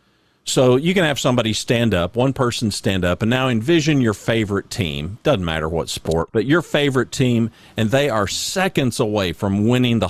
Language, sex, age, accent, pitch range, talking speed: English, male, 50-69, American, 95-125 Hz, 195 wpm